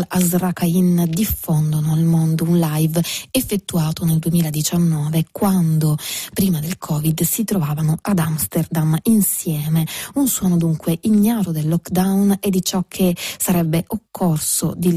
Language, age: Italian, 20-39